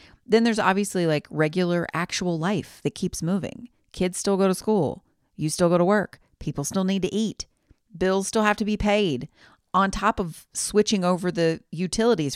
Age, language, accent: 40-59, English, American